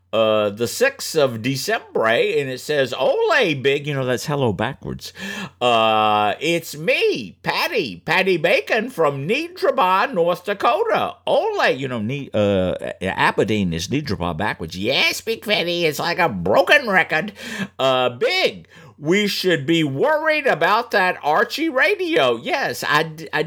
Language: English